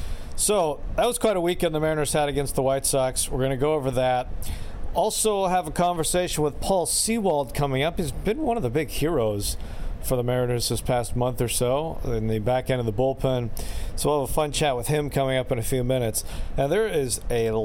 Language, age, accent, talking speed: English, 40-59, American, 230 wpm